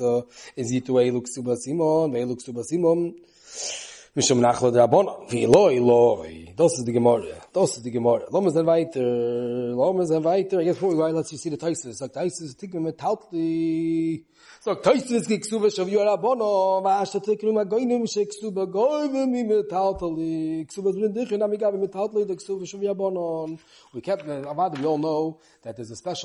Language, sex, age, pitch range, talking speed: English, male, 30-49, 130-195 Hz, 45 wpm